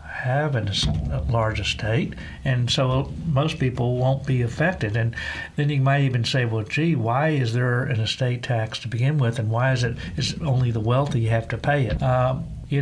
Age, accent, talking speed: 60-79, American, 190 wpm